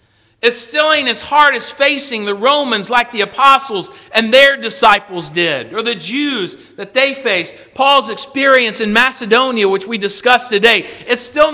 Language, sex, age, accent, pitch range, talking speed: English, male, 50-69, American, 190-265 Hz, 165 wpm